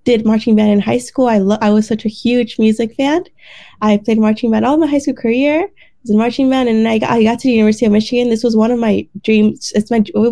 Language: English